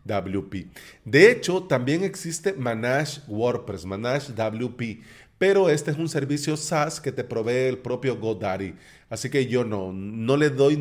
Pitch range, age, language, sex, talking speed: 120-150 Hz, 30-49, Spanish, male, 155 wpm